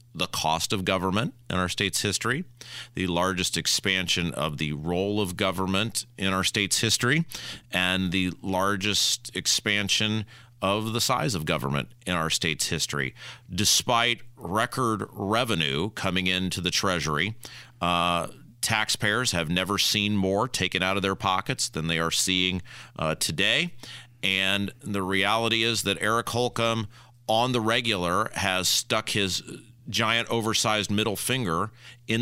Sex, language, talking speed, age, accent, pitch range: male, English, 140 wpm, 40-59, American, 90-115 Hz